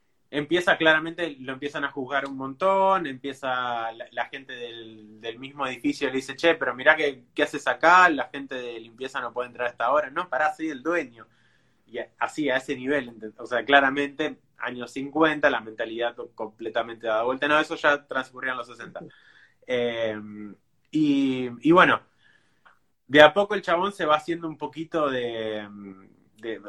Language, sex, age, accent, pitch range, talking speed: Spanish, male, 20-39, Argentinian, 125-155 Hz, 170 wpm